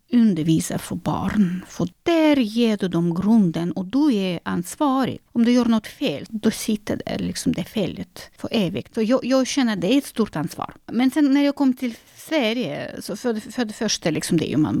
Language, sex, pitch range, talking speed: Swedish, female, 185-255 Hz, 205 wpm